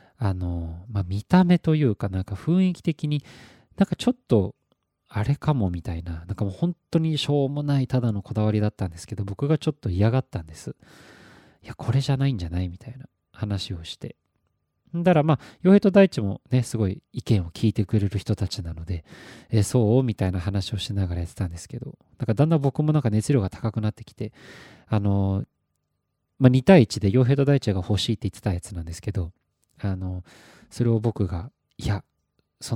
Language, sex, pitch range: Japanese, male, 95-125 Hz